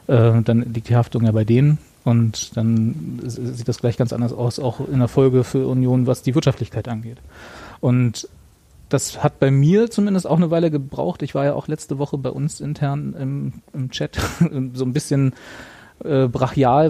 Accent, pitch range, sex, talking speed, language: German, 120-140 Hz, male, 180 wpm, German